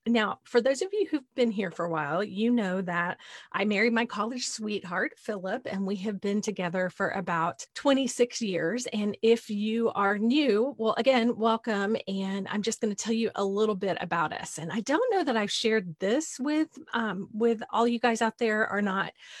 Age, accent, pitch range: 30-49, American, 190-240 Hz